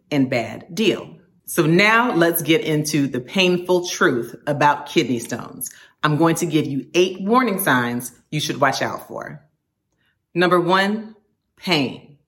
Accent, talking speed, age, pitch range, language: American, 145 wpm, 40-59, 145-180 Hz, English